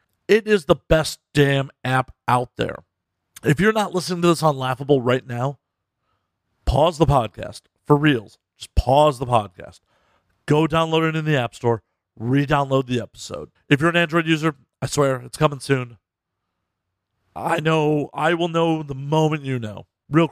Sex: male